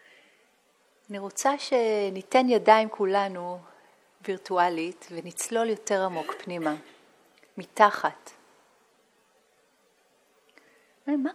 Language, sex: Hebrew, female